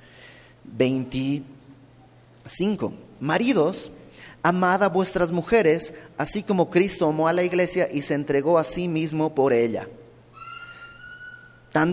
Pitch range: 130-185 Hz